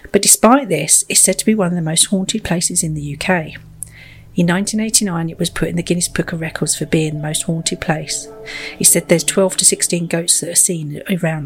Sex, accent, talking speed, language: female, British, 230 wpm, English